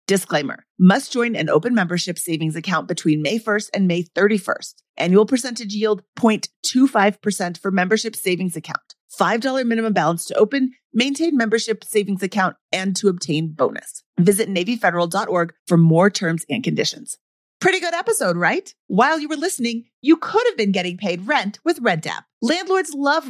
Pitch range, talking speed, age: 185-265 Hz, 155 wpm, 30-49